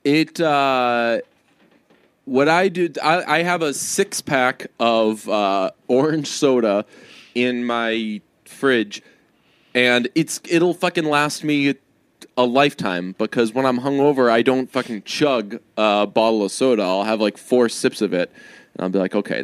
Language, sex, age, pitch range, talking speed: English, male, 20-39, 125-200 Hz, 155 wpm